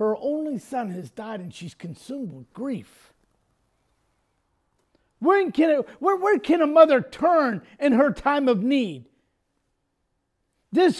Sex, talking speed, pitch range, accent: male, 130 wpm, 250-340 Hz, American